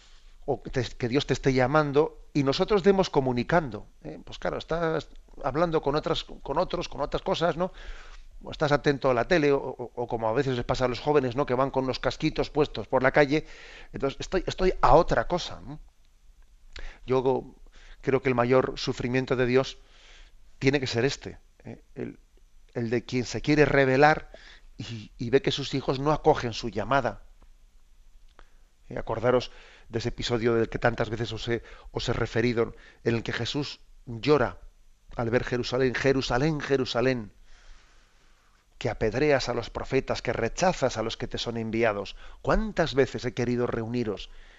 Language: Spanish